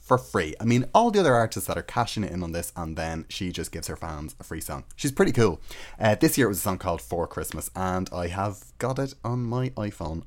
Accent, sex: Irish, male